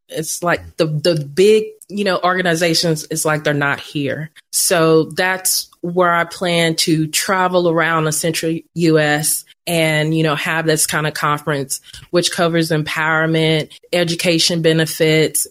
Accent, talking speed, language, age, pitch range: American, 145 wpm, English, 30-49, 155-175 Hz